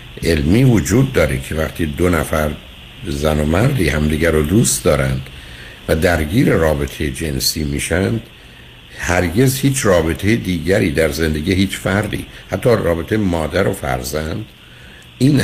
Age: 60-79